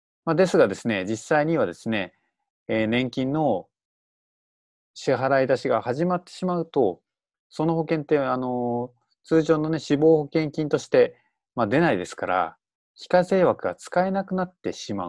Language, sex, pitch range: Japanese, male, 115-165 Hz